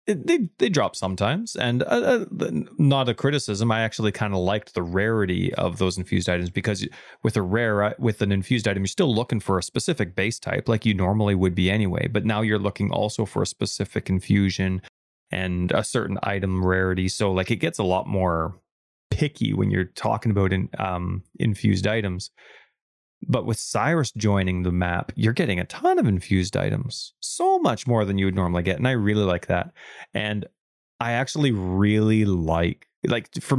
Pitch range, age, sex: 95-120 Hz, 20-39, male